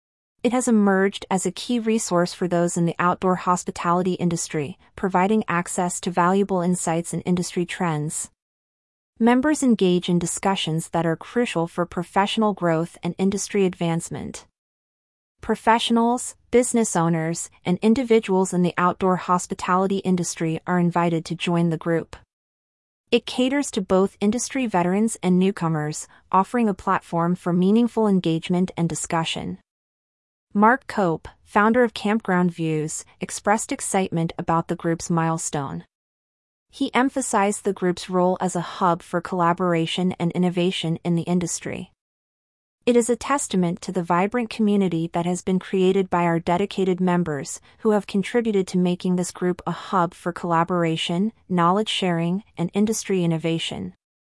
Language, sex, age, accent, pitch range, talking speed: English, female, 30-49, American, 170-200 Hz, 140 wpm